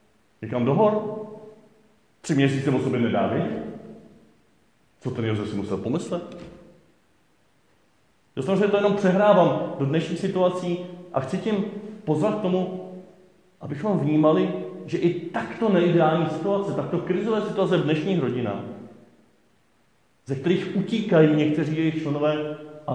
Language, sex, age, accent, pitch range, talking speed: Czech, male, 40-59, native, 130-180 Hz, 125 wpm